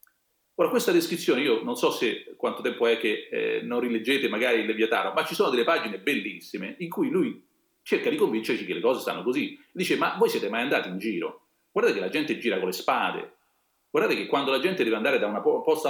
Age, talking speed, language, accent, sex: 40-59, 225 wpm, Italian, native, male